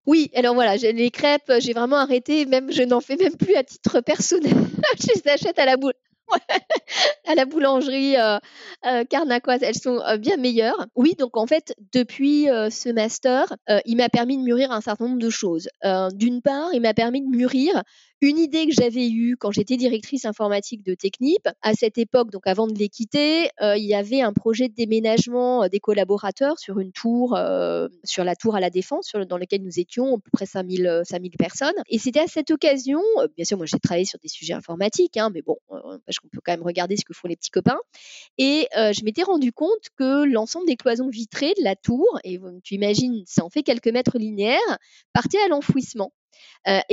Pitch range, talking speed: 205-270 Hz, 215 wpm